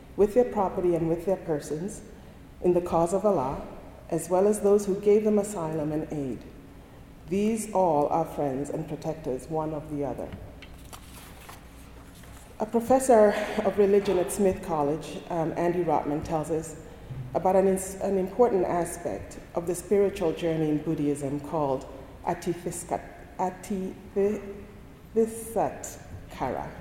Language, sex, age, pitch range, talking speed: English, female, 40-59, 155-200 Hz, 130 wpm